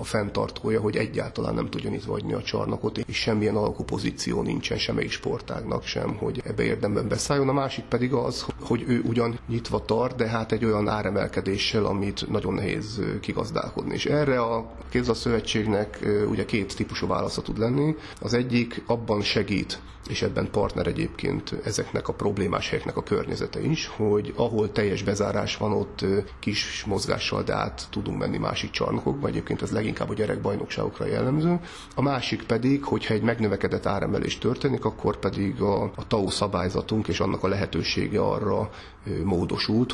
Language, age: Hungarian, 40-59